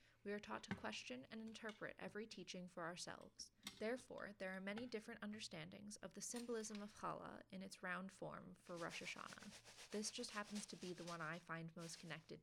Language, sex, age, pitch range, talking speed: English, female, 20-39, 165-210 Hz, 195 wpm